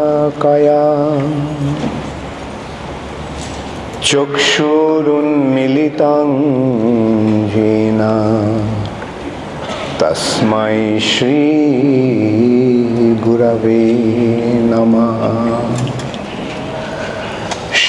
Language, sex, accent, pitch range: English, male, Indian, 115-150 Hz